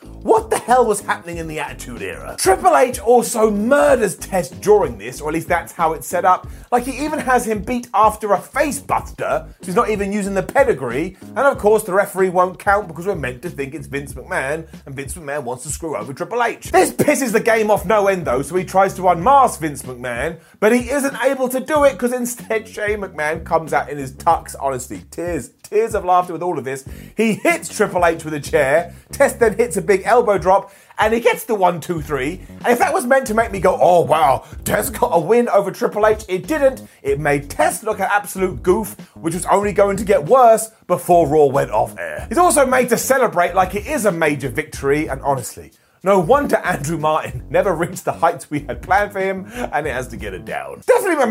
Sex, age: male, 30-49